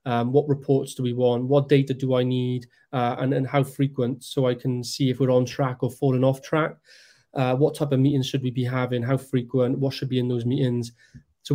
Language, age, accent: English, 30-49, British